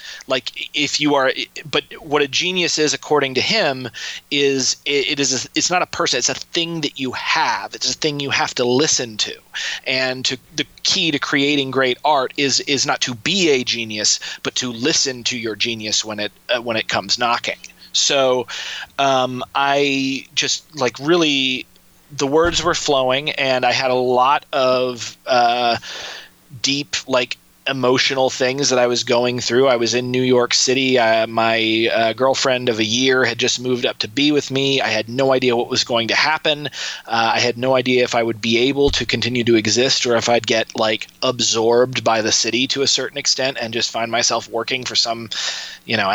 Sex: male